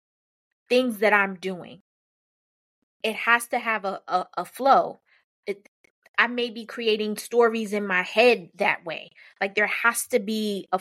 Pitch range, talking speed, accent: 190-235 Hz, 160 wpm, American